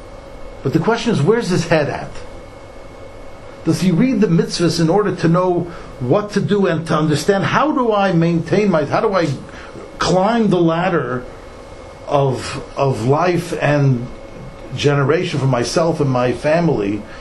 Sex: male